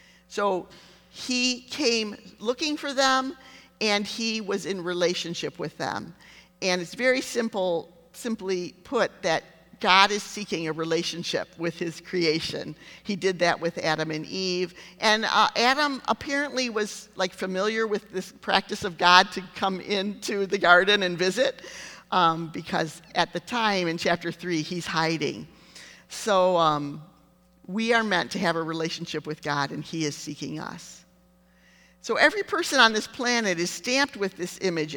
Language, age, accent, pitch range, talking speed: English, 50-69, American, 170-210 Hz, 155 wpm